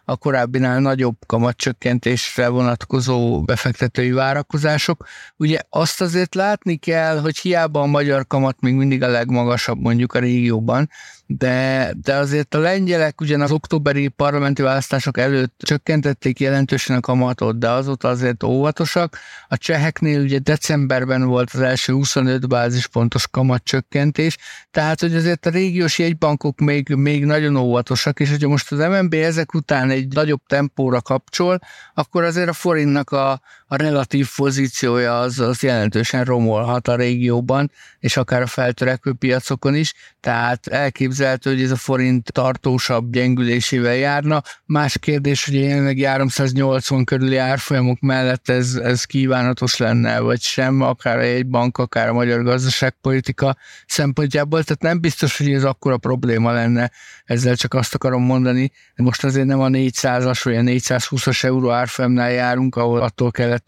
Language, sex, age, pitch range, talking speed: Hungarian, male, 60-79, 125-145 Hz, 145 wpm